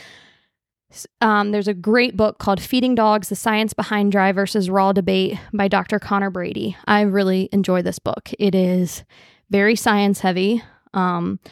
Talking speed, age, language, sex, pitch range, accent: 150 wpm, 20-39, English, female, 190-225 Hz, American